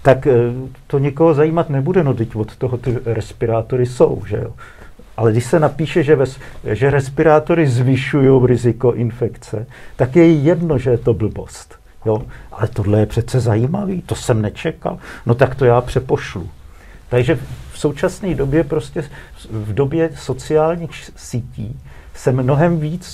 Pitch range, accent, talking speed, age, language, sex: 120-150 Hz, native, 150 wpm, 50-69, Czech, male